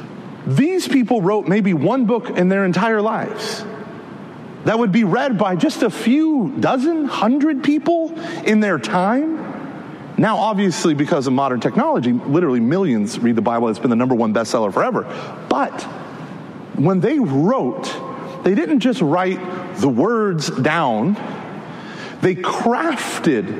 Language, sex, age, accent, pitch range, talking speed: English, male, 30-49, American, 155-230 Hz, 140 wpm